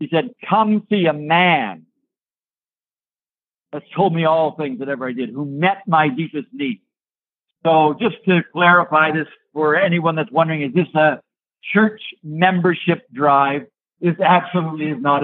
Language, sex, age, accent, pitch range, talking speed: English, male, 60-79, American, 155-200 Hz, 155 wpm